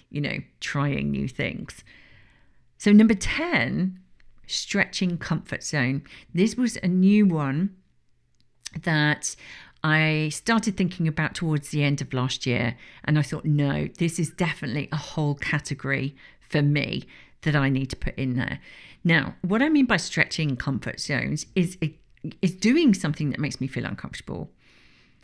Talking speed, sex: 150 wpm, female